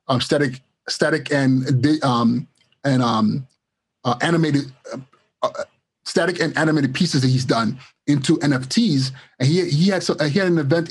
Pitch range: 130-160 Hz